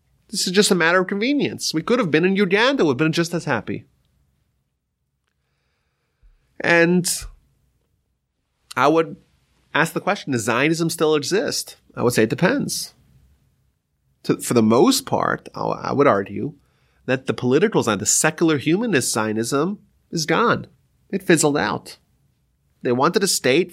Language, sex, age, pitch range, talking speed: English, male, 30-49, 120-200 Hz, 145 wpm